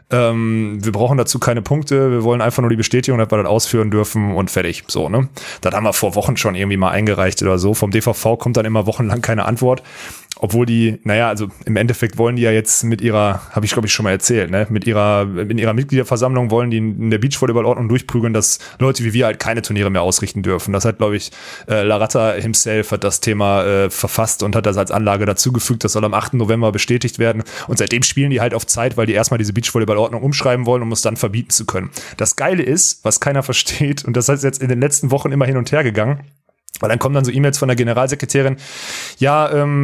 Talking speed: 235 wpm